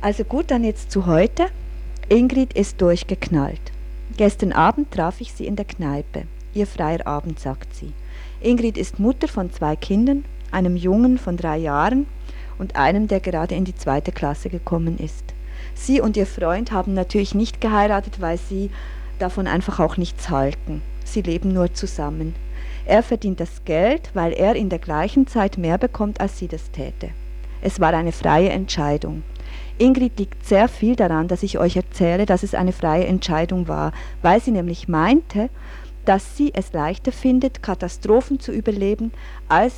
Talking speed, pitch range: 165 wpm, 155-210 Hz